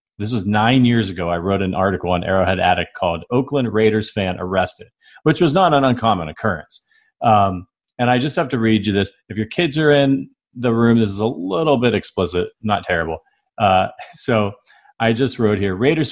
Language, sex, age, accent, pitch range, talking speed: English, male, 40-59, American, 95-120 Hz, 200 wpm